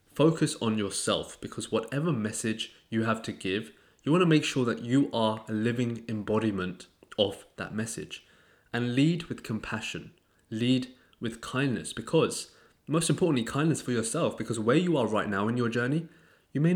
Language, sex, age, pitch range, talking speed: English, male, 20-39, 95-125 Hz, 170 wpm